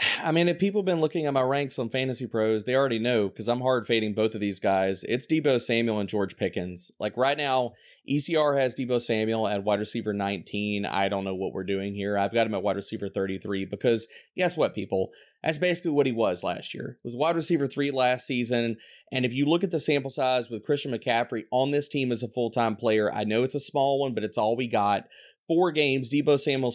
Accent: American